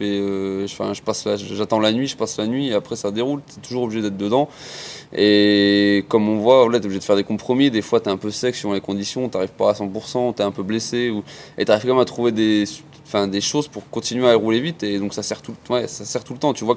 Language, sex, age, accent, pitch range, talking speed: French, male, 20-39, French, 105-130 Hz, 310 wpm